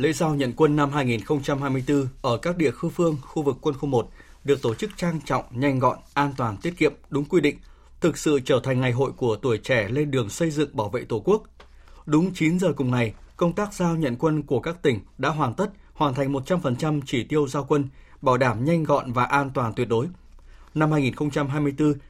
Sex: male